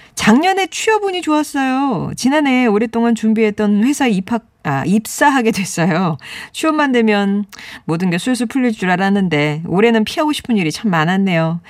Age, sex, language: 40-59, female, Korean